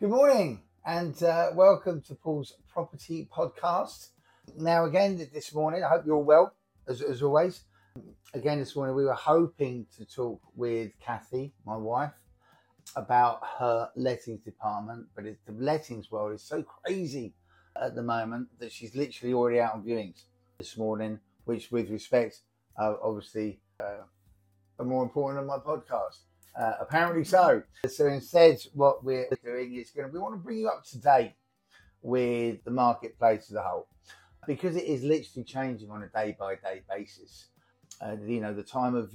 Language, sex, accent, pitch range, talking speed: English, male, British, 110-150 Hz, 165 wpm